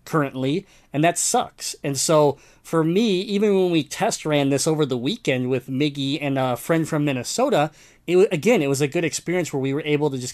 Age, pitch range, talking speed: 20-39, 130-165 Hz, 215 wpm